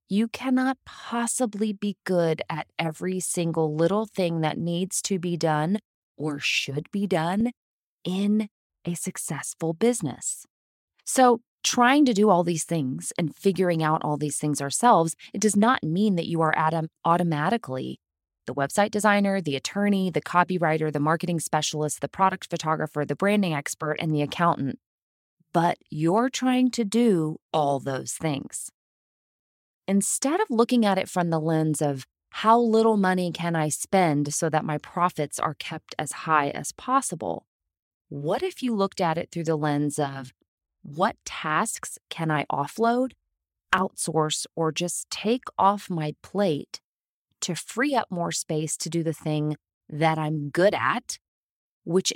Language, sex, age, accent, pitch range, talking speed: English, female, 20-39, American, 150-200 Hz, 155 wpm